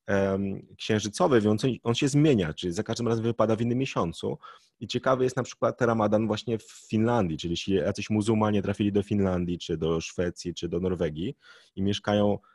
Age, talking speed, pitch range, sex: 30-49, 175 wpm, 95-115 Hz, male